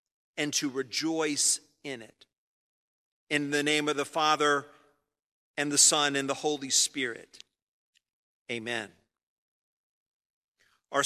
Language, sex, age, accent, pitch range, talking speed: English, male, 50-69, American, 135-165 Hz, 110 wpm